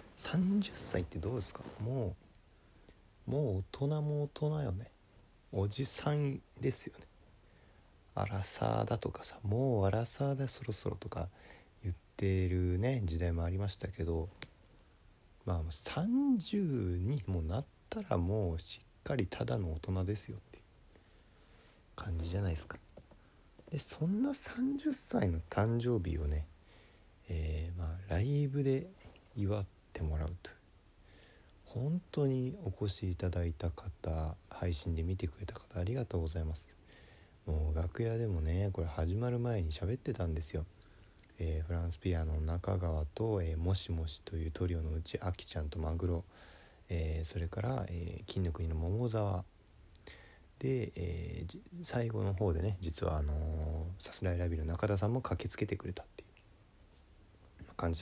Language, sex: Japanese, male